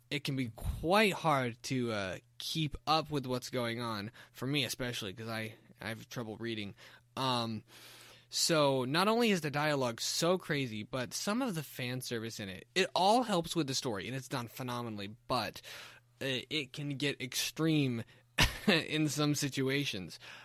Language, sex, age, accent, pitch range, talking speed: English, male, 20-39, American, 120-150 Hz, 170 wpm